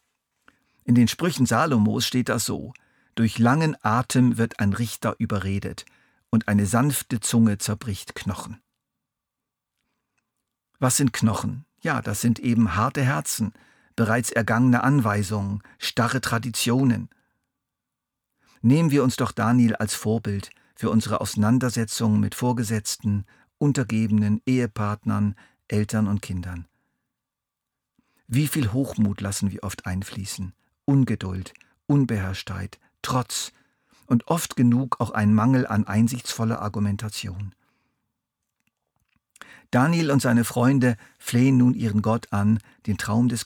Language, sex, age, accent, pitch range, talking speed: German, male, 50-69, German, 105-130 Hz, 115 wpm